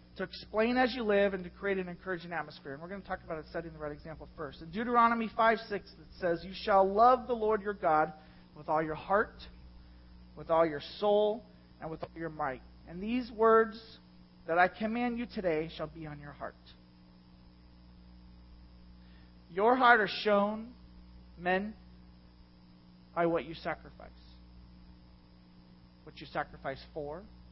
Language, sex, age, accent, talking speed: English, male, 40-59, American, 160 wpm